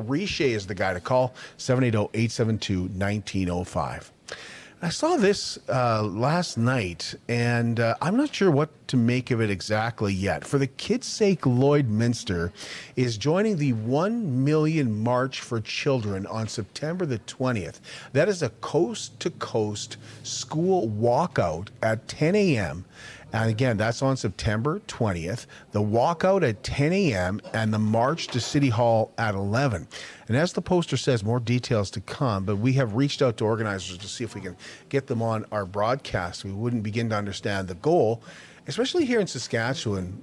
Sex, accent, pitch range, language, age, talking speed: male, American, 110-140 Hz, English, 40-59, 160 wpm